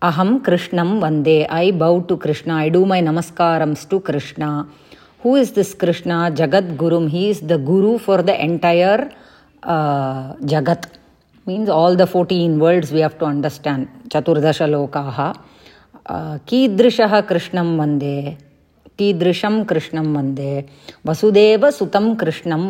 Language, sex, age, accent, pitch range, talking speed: English, female, 30-49, Indian, 155-195 Hz, 130 wpm